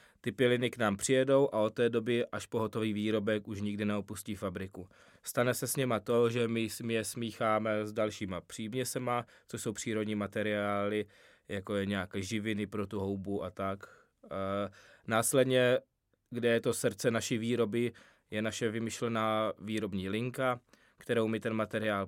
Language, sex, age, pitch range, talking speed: Czech, male, 20-39, 105-120 Hz, 160 wpm